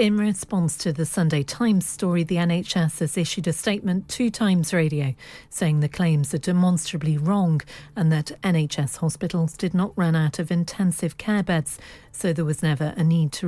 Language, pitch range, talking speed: English, 145-190 Hz, 185 wpm